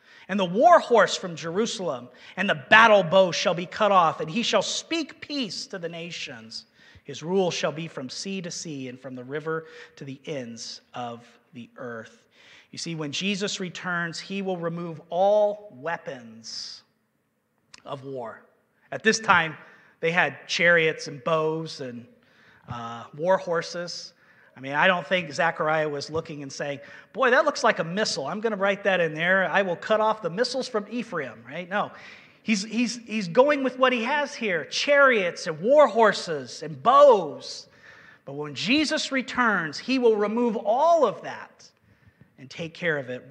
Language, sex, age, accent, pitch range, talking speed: English, male, 40-59, American, 155-225 Hz, 175 wpm